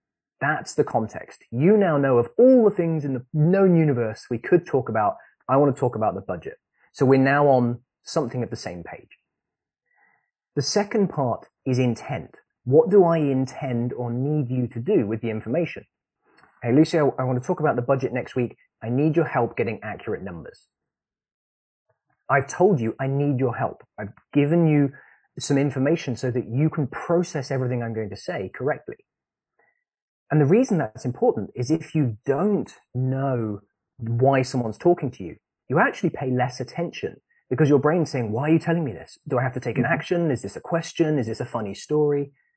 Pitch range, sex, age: 120-155 Hz, male, 20-39